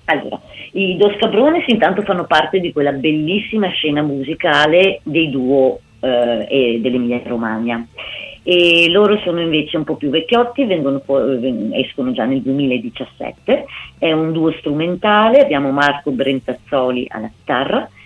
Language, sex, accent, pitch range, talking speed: Italian, female, native, 130-180 Hz, 130 wpm